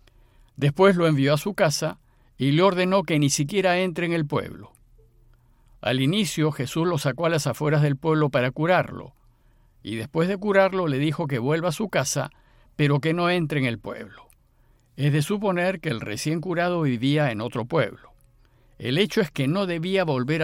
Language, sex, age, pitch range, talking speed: Spanish, male, 50-69, 130-180 Hz, 190 wpm